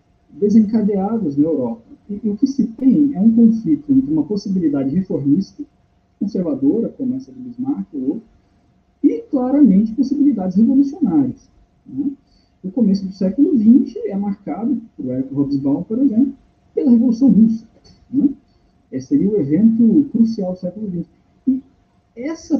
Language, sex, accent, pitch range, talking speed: Portuguese, male, Brazilian, 190-270 Hz, 140 wpm